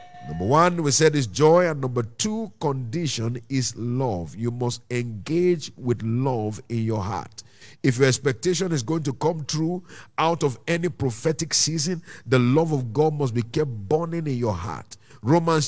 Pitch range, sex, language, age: 130-200 Hz, male, English, 50-69